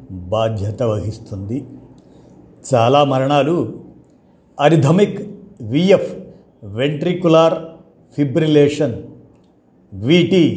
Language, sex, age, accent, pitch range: Telugu, male, 50-69, native, 120-165 Hz